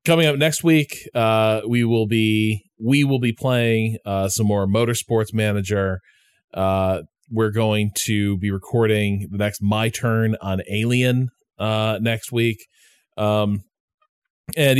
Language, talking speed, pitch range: English, 140 wpm, 100-120 Hz